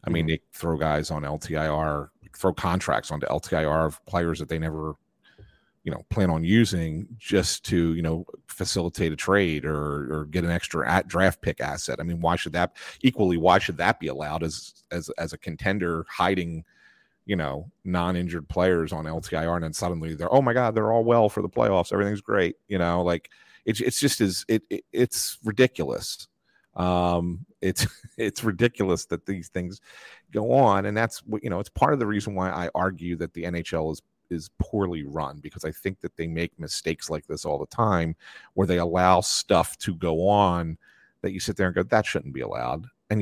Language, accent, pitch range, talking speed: English, American, 80-100 Hz, 200 wpm